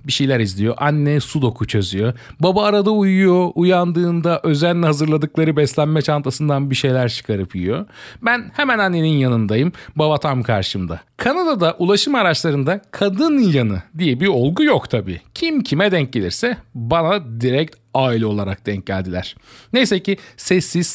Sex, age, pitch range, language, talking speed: male, 40-59, 120-175 Hz, Turkish, 140 wpm